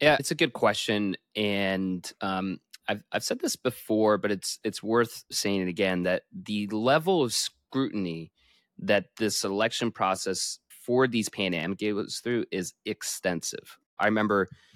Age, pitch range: 20-39, 95-115 Hz